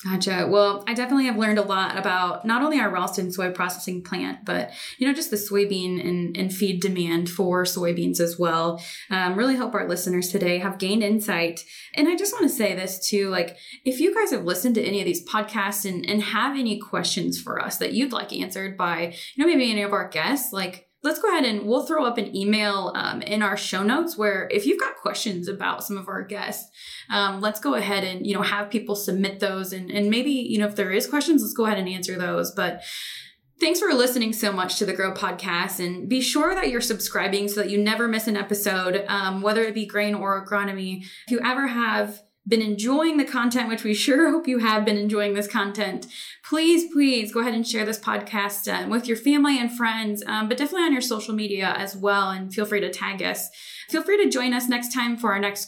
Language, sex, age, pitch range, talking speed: English, female, 20-39, 190-240 Hz, 230 wpm